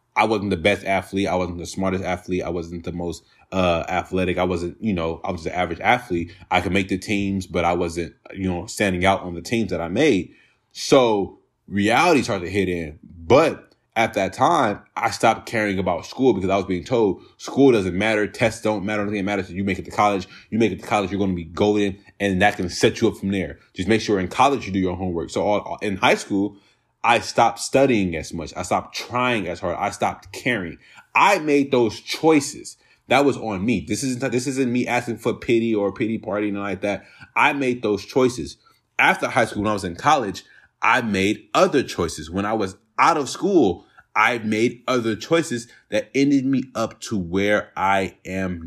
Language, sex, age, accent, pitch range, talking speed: English, male, 20-39, American, 90-110 Hz, 220 wpm